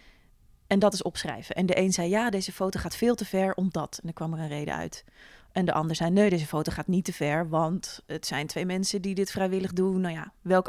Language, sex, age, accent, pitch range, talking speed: Dutch, female, 20-39, Dutch, 185-235 Hz, 265 wpm